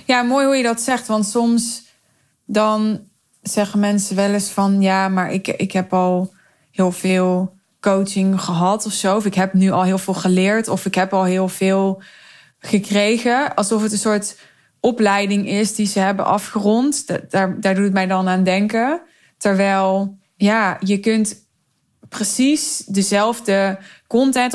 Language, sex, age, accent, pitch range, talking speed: Dutch, female, 20-39, Dutch, 195-230 Hz, 160 wpm